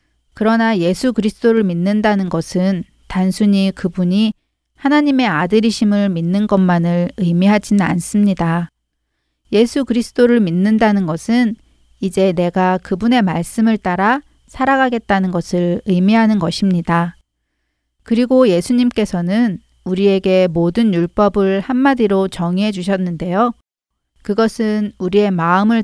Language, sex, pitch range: Korean, female, 180-225 Hz